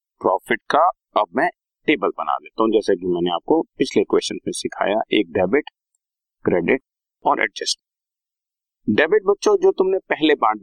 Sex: male